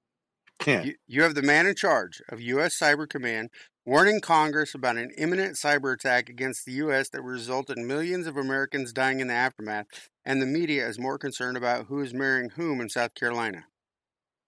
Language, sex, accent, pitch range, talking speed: English, male, American, 125-155 Hz, 180 wpm